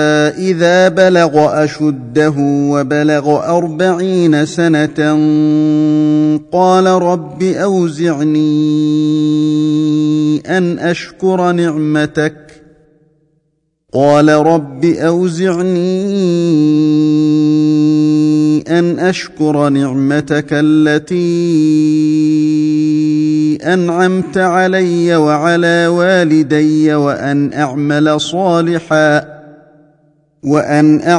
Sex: male